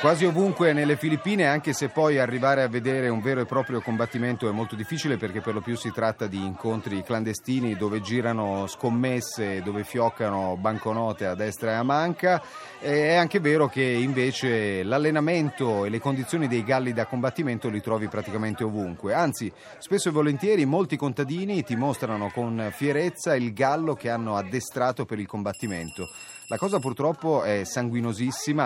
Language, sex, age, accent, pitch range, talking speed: Italian, male, 30-49, native, 105-140 Hz, 165 wpm